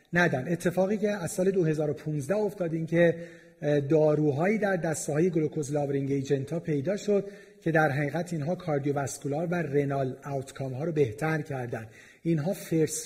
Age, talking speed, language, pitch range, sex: 40-59, 150 wpm, Persian, 140-175 Hz, male